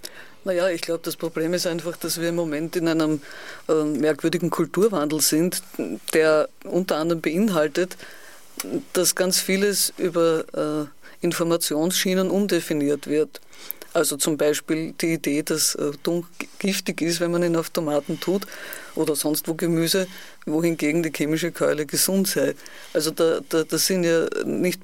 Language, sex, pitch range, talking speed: German, female, 160-180 Hz, 150 wpm